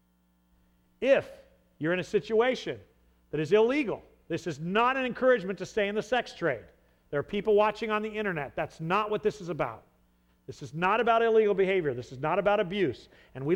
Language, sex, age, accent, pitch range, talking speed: English, male, 40-59, American, 135-210 Hz, 200 wpm